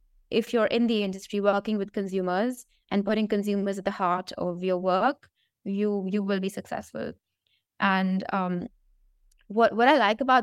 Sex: female